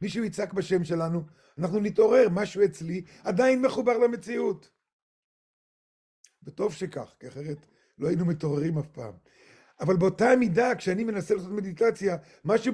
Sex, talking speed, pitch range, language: male, 130 wpm, 165-225 Hz, Hebrew